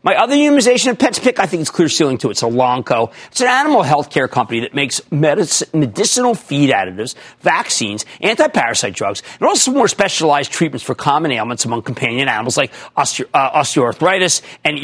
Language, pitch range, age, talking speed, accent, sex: English, 135-200 Hz, 40-59, 180 wpm, American, male